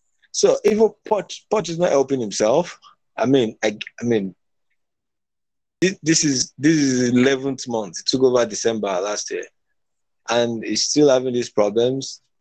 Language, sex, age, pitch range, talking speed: English, male, 20-39, 105-125 Hz, 160 wpm